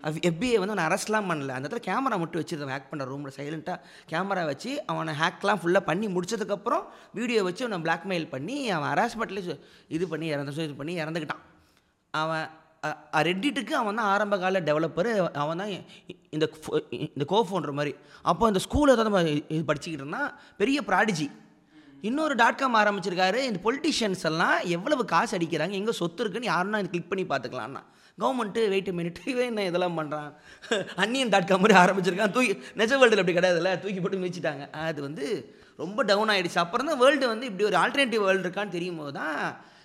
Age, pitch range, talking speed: 30-49, 155-210 Hz, 165 wpm